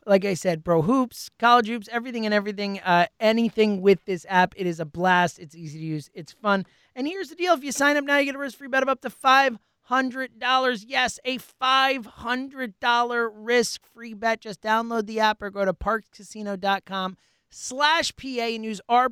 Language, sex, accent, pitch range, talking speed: English, male, American, 185-240 Hz, 190 wpm